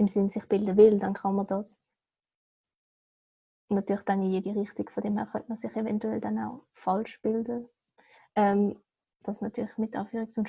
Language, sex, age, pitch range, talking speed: German, female, 20-39, 200-220 Hz, 185 wpm